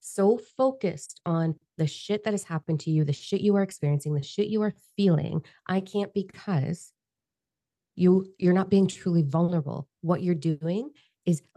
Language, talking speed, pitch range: English, 175 wpm, 150-190 Hz